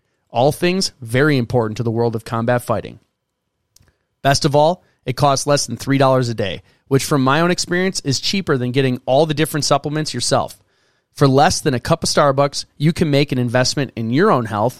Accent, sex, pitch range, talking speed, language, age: American, male, 125-160 Hz, 205 wpm, English, 30-49